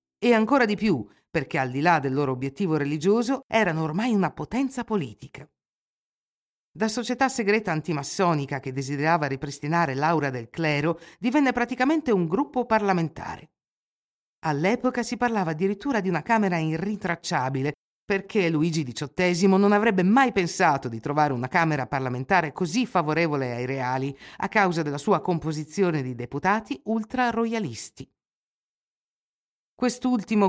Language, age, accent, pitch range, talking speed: Italian, 50-69, native, 145-205 Hz, 130 wpm